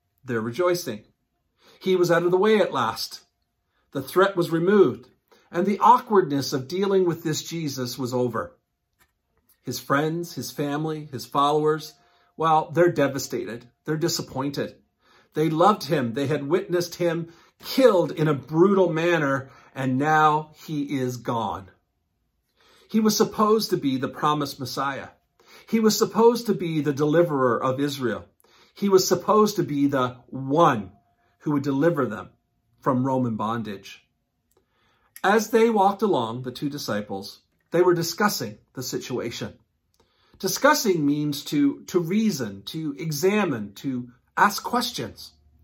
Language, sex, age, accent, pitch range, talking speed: English, male, 50-69, American, 125-185 Hz, 140 wpm